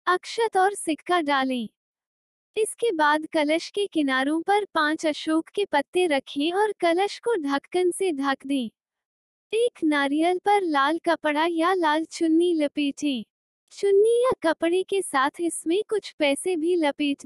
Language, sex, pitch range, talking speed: Hindi, female, 290-380 Hz, 145 wpm